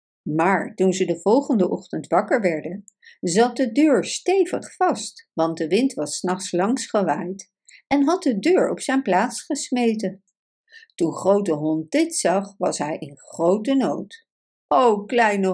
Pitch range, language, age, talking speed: 185-290 Hz, Dutch, 60-79, 155 wpm